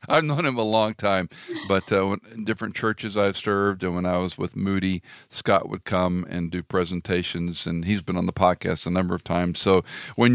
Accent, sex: American, male